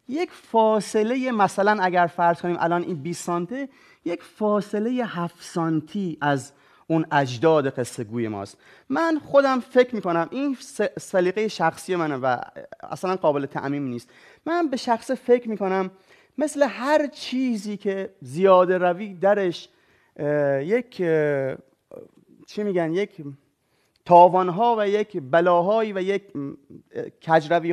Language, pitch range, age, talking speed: Persian, 155-215 Hz, 30-49, 130 wpm